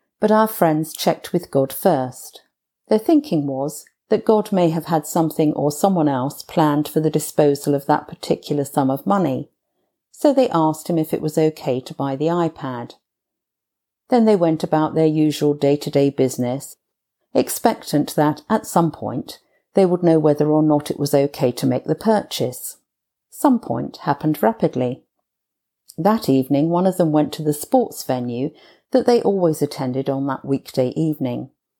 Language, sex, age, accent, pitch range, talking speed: English, female, 50-69, British, 145-190 Hz, 170 wpm